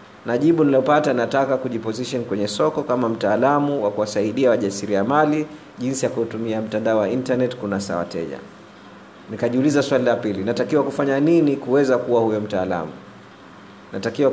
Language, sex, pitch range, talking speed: Swahili, male, 115-170 Hz, 135 wpm